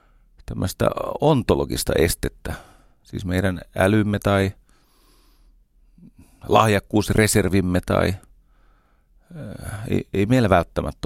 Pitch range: 85-105 Hz